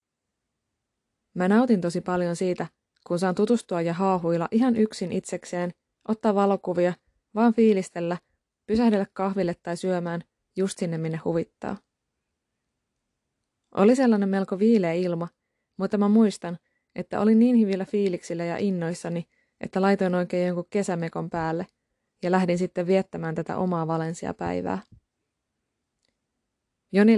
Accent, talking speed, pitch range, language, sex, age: native, 120 wpm, 175-205 Hz, Finnish, female, 20-39